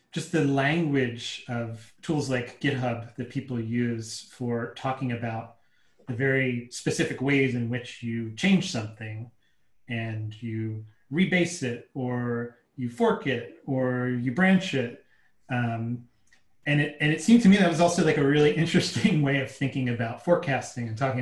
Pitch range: 120-140 Hz